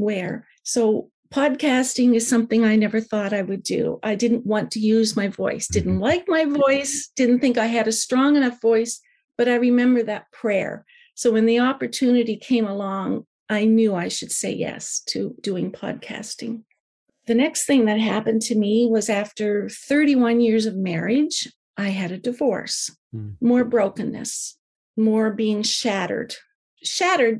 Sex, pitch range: female, 210-245 Hz